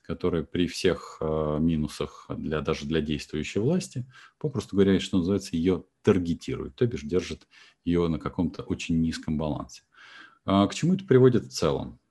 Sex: male